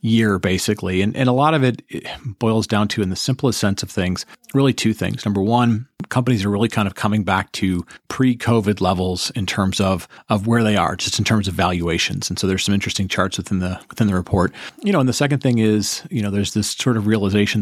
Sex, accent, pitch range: male, American, 95-115 Hz